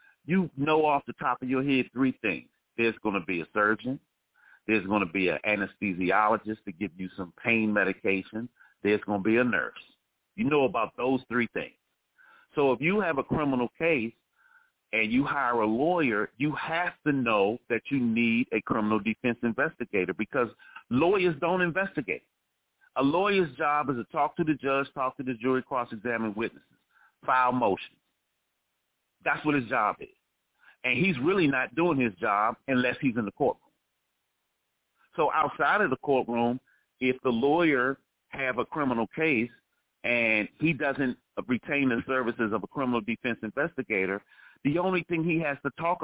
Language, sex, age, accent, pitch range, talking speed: English, male, 40-59, American, 110-150 Hz, 170 wpm